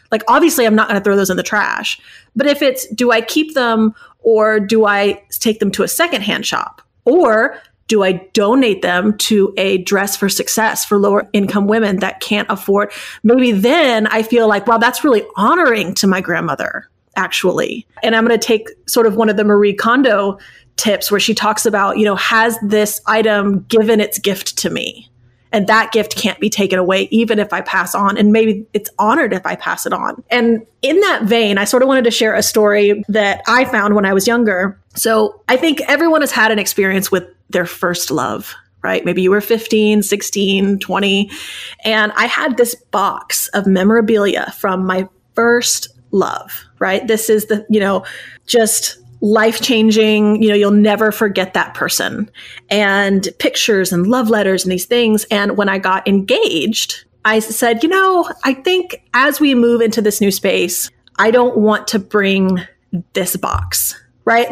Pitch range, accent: 200-230 Hz, American